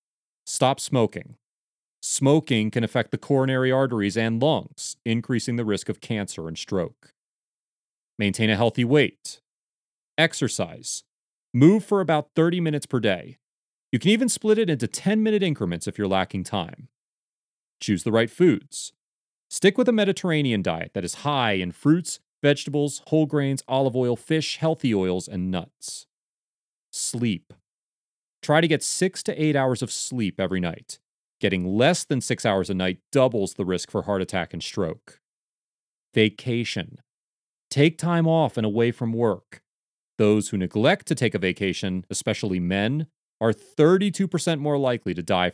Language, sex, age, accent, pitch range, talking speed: English, male, 30-49, American, 100-150 Hz, 150 wpm